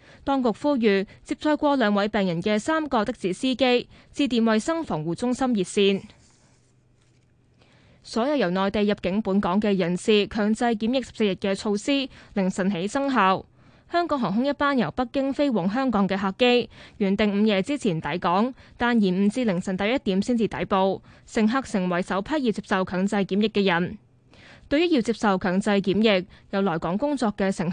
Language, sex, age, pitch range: Chinese, female, 20-39, 190-250 Hz